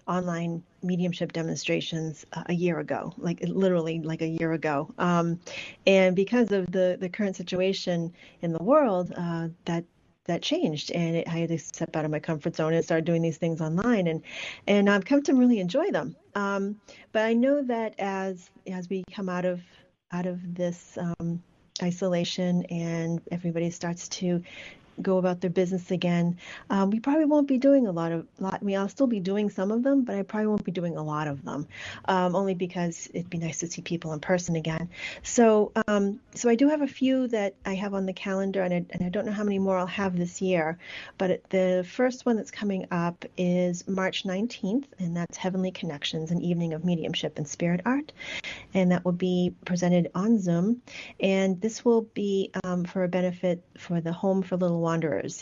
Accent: American